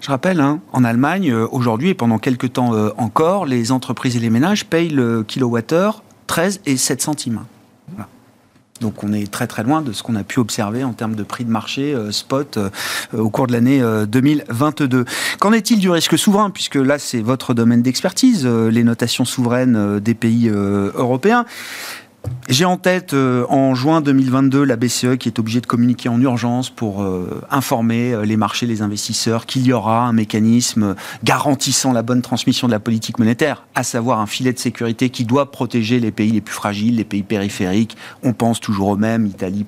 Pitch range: 115-140 Hz